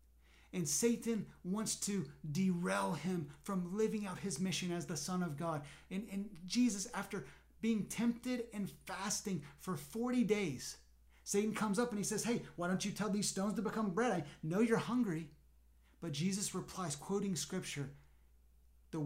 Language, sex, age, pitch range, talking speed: English, male, 30-49, 155-205 Hz, 165 wpm